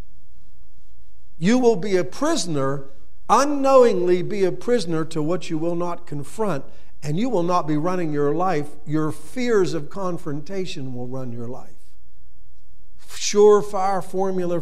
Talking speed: 135 wpm